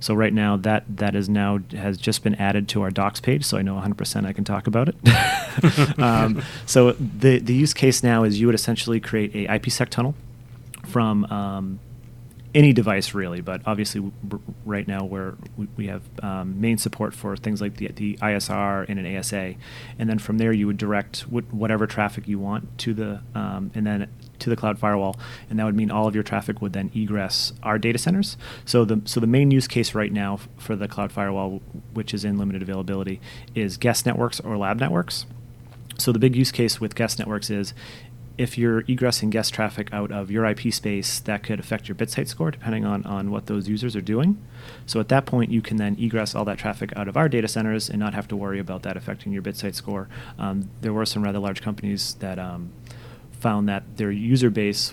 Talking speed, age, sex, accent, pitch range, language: 215 wpm, 30-49, male, American, 100-120 Hz, English